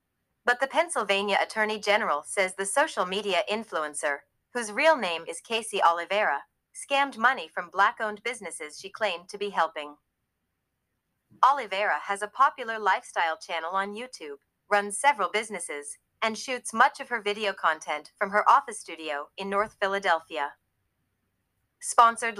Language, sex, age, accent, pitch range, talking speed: English, female, 30-49, American, 170-230 Hz, 140 wpm